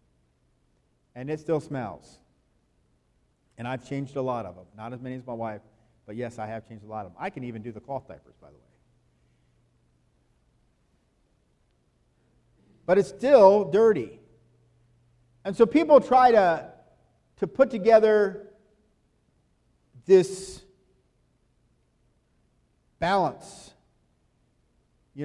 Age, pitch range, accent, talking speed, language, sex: 50-69, 120-160 Hz, American, 120 wpm, English, male